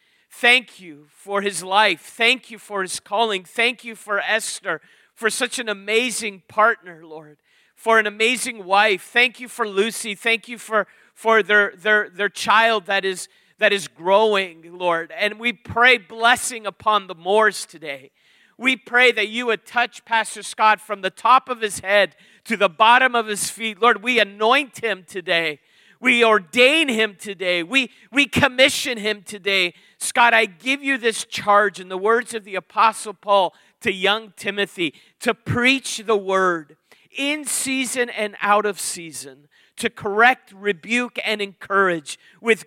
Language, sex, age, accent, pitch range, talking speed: English, male, 40-59, American, 195-240 Hz, 165 wpm